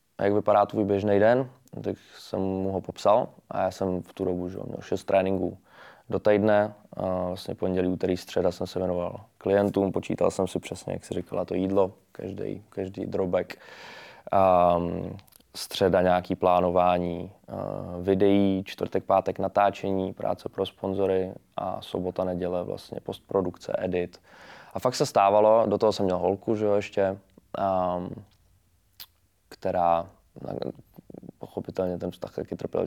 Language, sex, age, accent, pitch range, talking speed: Czech, male, 20-39, native, 90-100 Hz, 145 wpm